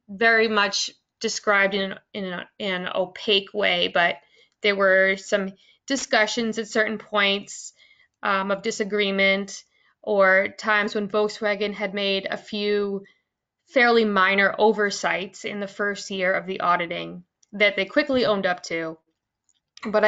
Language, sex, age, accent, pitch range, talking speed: English, female, 20-39, American, 190-215 Hz, 135 wpm